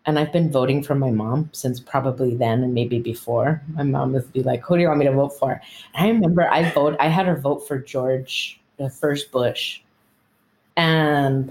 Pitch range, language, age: 130-155 Hz, English, 20-39